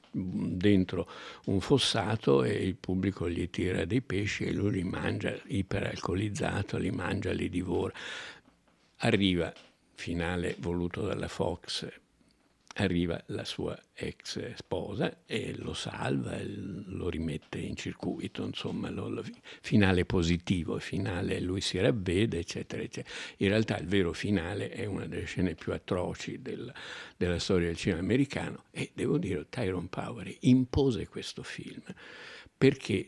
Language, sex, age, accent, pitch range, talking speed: Italian, male, 60-79, native, 90-105 Hz, 135 wpm